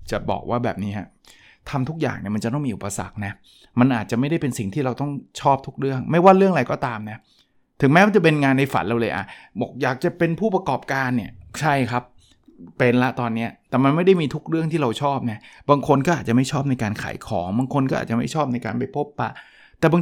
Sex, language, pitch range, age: male, Thai, 115-145 Hz, 20-39